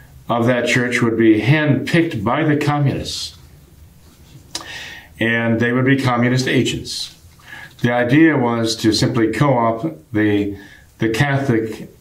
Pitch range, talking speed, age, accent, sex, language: 105-125 Hz, 120 wpm, 40-59, American, male, English